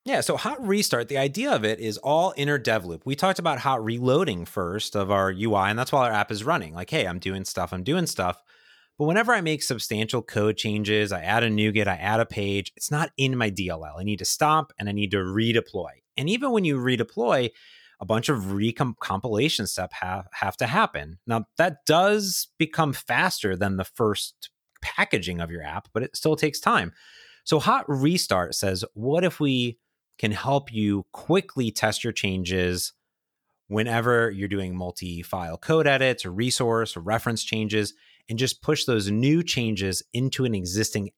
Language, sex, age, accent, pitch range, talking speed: English, male, 30-49, American, 100-135 Hz, 195 wpm